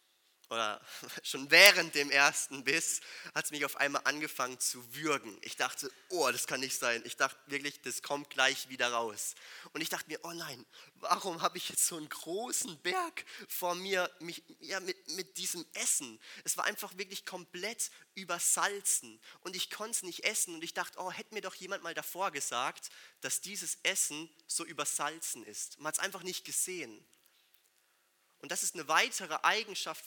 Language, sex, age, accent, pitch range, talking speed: German, male, 30-49, German, 135-185 Hz, 185 wpm